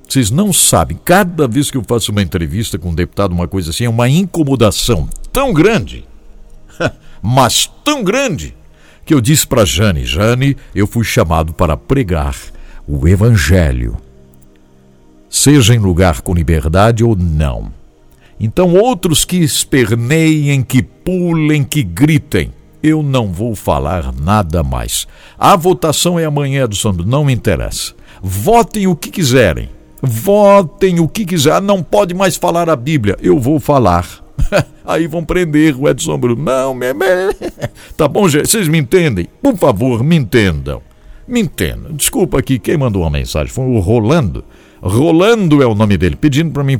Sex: male